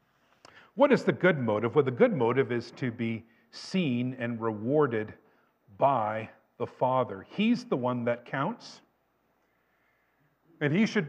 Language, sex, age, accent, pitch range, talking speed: English, male, 50-69, American, 120-185 Hz, 140 wpm